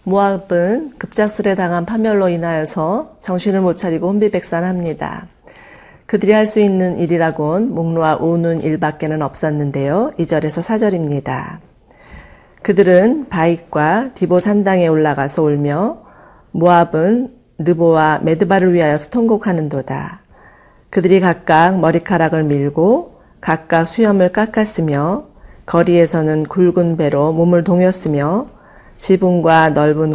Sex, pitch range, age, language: female, 155-195 Hz, 40-59, Korean